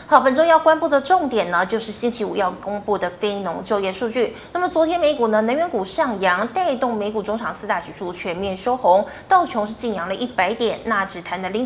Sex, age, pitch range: female, 20-39, 200-275 Hz